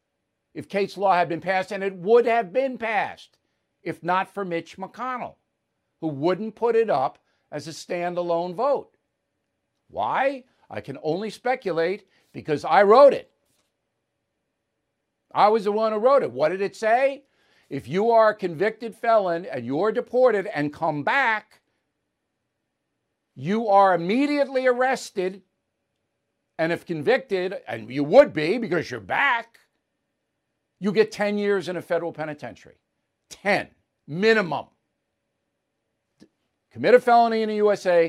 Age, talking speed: 60-79, 140 wpm